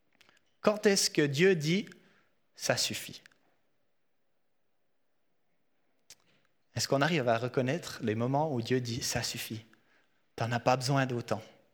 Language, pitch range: French, 125-175 Hz